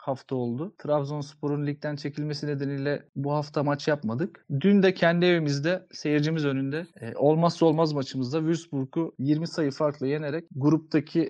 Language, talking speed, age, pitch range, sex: Turkish, 135 wpm, 30-49, 145-175 Hz, male